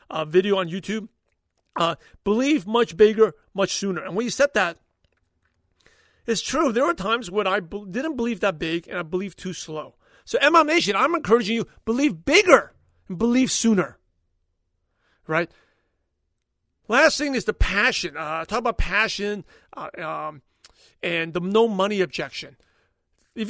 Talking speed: 155 wpm